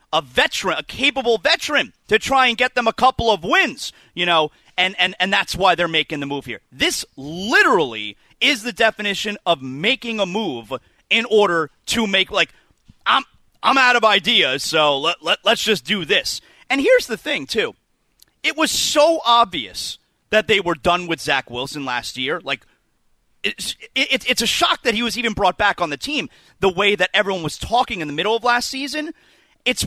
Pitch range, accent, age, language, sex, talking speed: 180-285 Hz, American, 30-49, English, male, 195 wpm